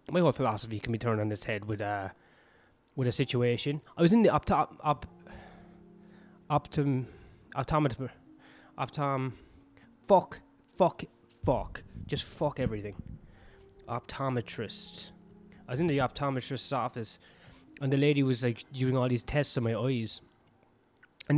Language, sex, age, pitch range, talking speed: English, male, 20-39, 115-160 Hz, 140 wpm